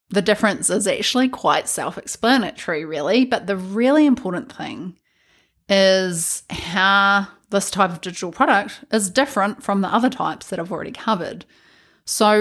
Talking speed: 145 wpm